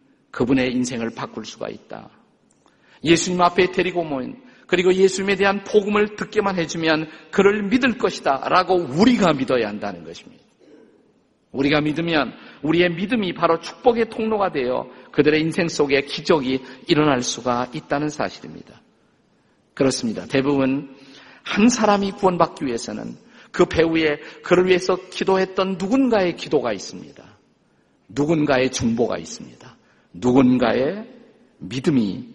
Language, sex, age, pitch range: Korean, male, 50-69, 135-190 Hz